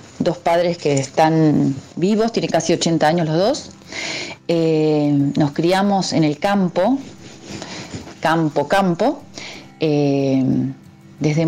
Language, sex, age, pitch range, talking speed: Spanish, female, 40-59, 145-180 Hz, 110 wpm